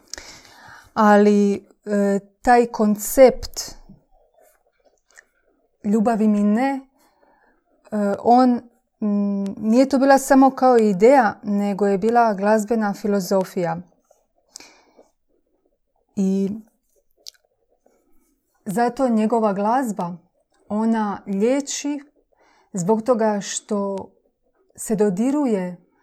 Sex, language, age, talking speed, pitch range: female, Croatian, 30-49, 75 wpm, 200-245 Hz